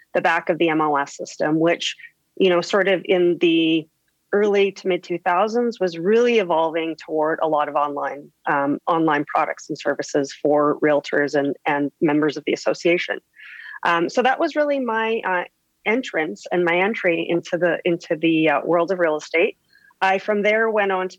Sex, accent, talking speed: female, American, 180 wpm